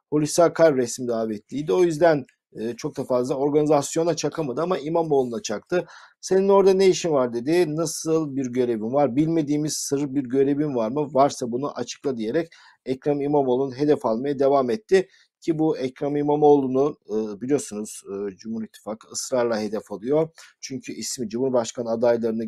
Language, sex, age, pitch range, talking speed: Turkish, male, 50-69, 115-150 Hz, 145 wpm